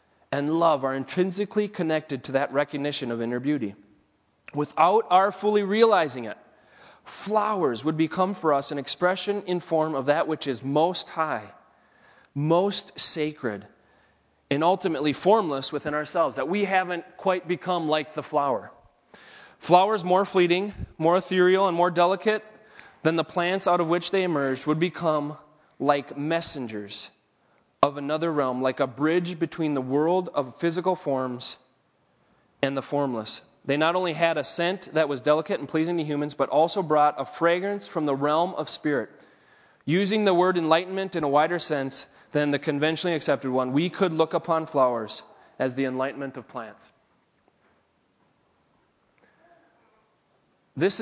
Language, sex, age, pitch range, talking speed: English, male, 30-49, 140-180 Hz, 150 wpm